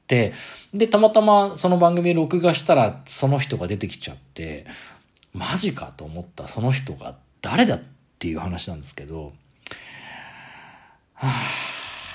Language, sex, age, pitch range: Japanese, male, 40-59, 95-150 Hz